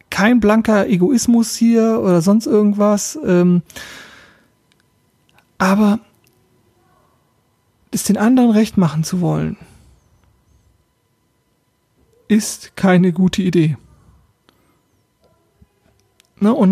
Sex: male